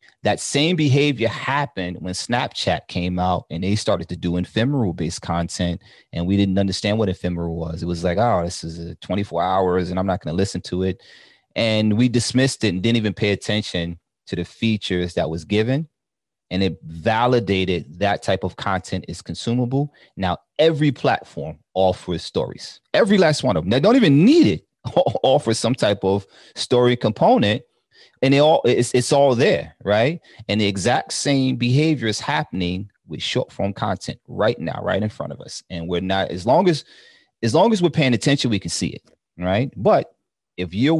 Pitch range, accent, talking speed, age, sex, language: 90-120 Hz, American, 190 wpm, 30-49, male, English